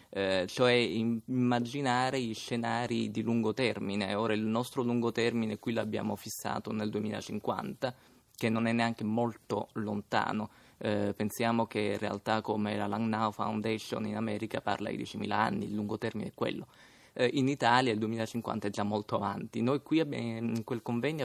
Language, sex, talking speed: Italian, male, 170 wpm